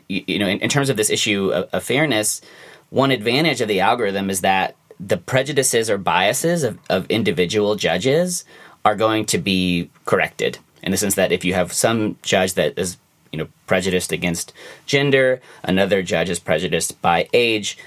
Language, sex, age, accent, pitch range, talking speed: English, male, 30-49, American, 95-125 Hz, 180 wpm